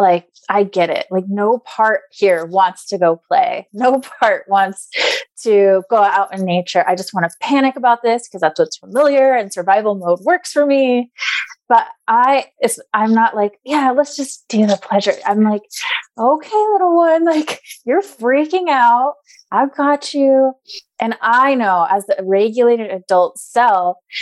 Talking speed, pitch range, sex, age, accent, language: 170 wpm, 185-275 Hz, female, 20-39, American, English